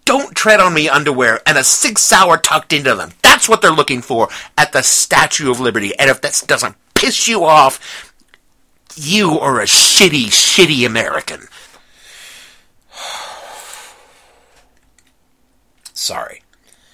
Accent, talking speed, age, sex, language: American, 130 wpm, 50-69, male, English